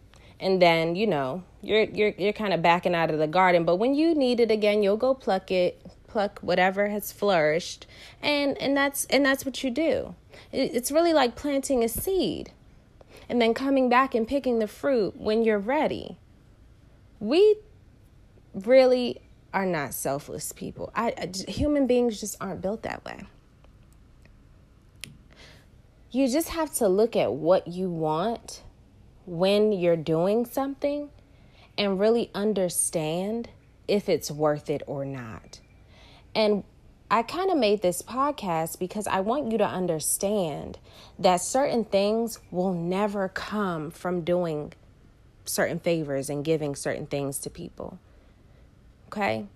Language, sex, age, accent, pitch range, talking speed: English, female, 20-39, American, 155-235 Hz, 145 wpm